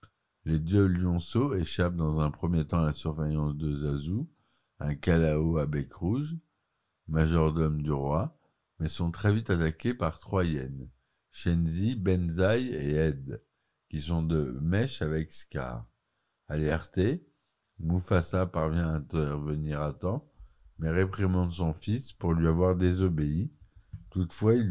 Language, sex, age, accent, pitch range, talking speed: French, male, 50-69, French, 80-110 Hz, 135 wpm